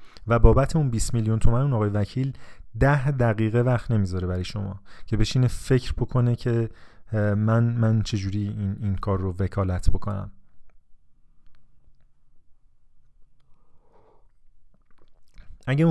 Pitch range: 100-125 Hz